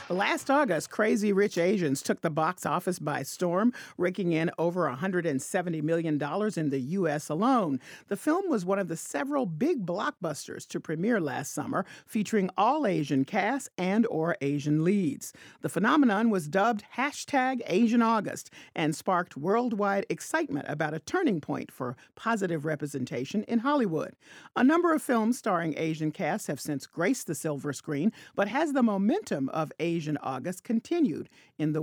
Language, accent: English, American